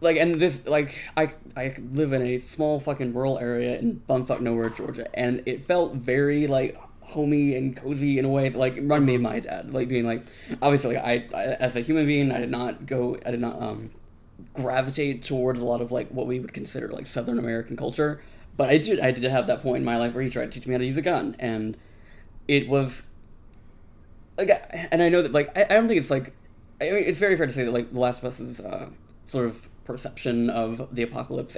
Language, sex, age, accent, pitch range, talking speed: English, male, 20-39, American, 120-140 Hz, 240 wpm